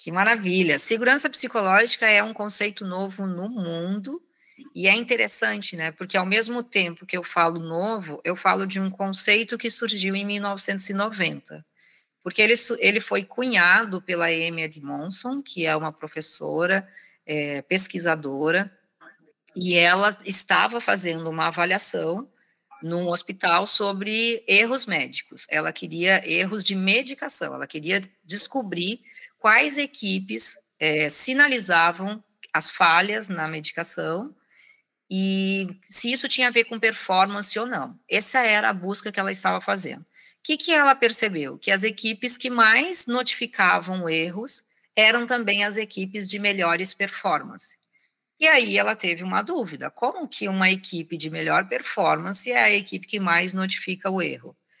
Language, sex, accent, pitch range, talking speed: Portuguese, female, Brazilian, 175-230 Hz, 140 wpm